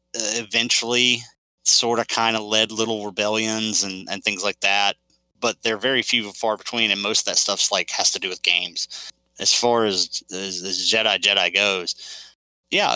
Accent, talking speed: American, 185 wpm